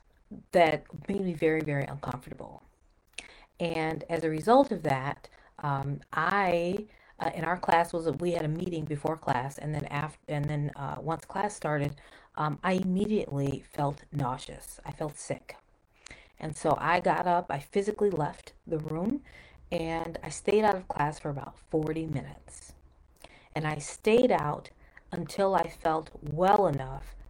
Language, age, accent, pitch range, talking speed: English, 40-59, American, 145-180 Hz, 155 wpm